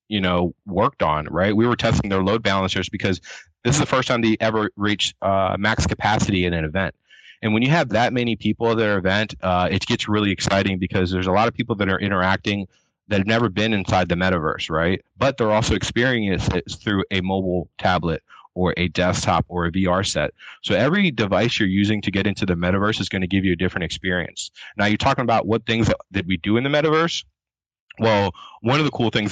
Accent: American